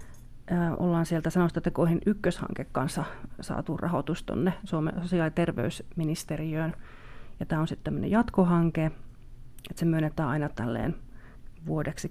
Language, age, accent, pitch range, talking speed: Finnish, 30-49, native, 150-175 Hz, 110 wpm